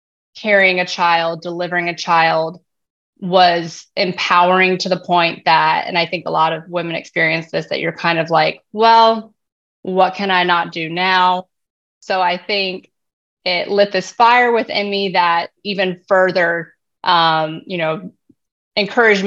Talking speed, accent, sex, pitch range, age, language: 155 wpm, American, female, 170-195 Hz, 20-39, English